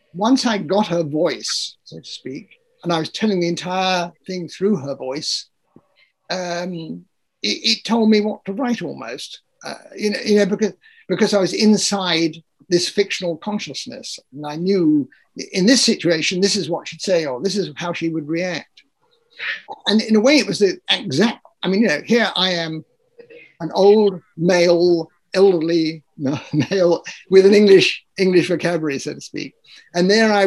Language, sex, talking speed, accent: English, male, 175 wpm, British